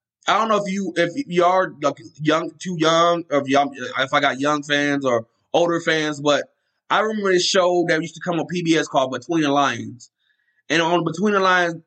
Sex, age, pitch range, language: male, 20-39, 145-175 Hz, English